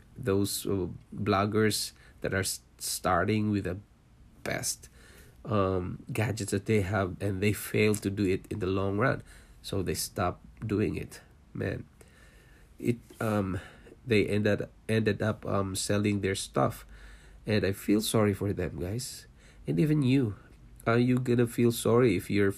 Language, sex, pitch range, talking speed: English, male, 100-120 Hz, 150 wpm